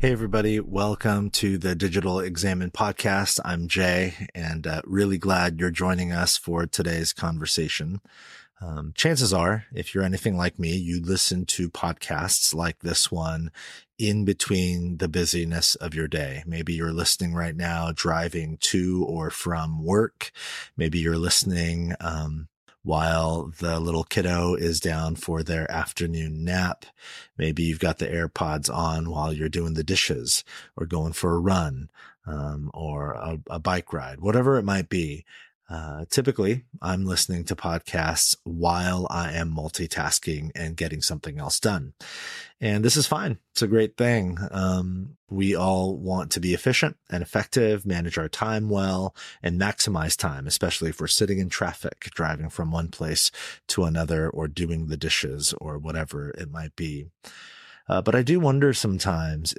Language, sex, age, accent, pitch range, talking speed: English, male, 30-49, American, 80-95 Hz, 160 wpm